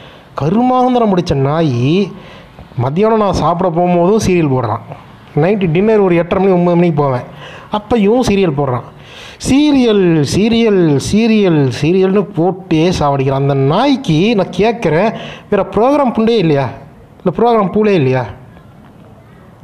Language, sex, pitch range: Tamil, male, 145-200 Hz